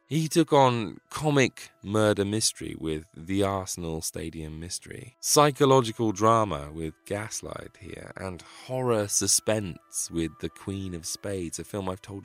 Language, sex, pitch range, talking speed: English, male, 85-115 Hz, 135 wpm